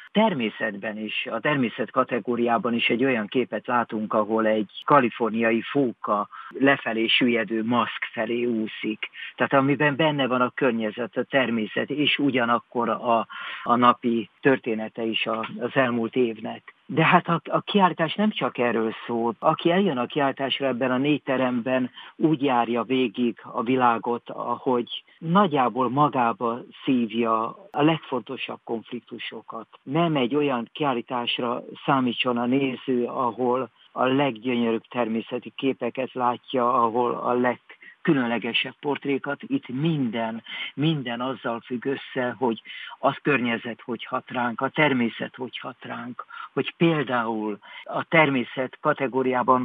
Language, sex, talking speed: Hungarian, male, 130 wpm